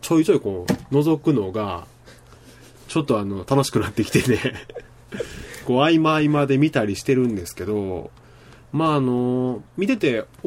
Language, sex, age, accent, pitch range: Japanese, male, 20-39, native, 105-140 Hz